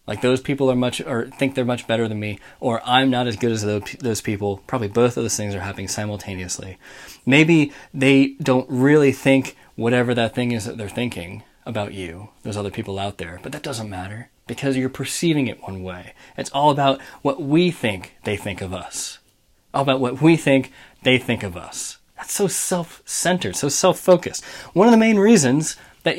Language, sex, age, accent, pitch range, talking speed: English, male, 20-39, American, 105-150 Hz, 205 wpm